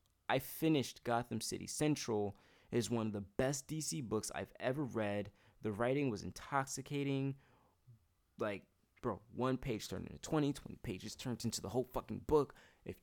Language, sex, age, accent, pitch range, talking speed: English, male, 20-39, American, 95-115 Hz, 165 wpm